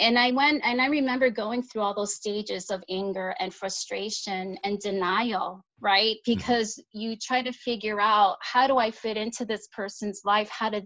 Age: 30-49